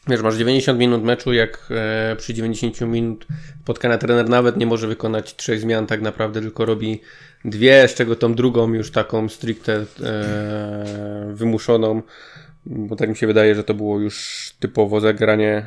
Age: 20-39